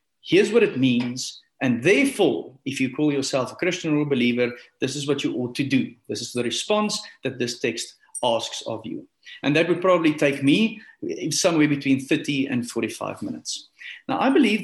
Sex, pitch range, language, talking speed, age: male, 130-190 Hz, English, 195 wpm, 40-59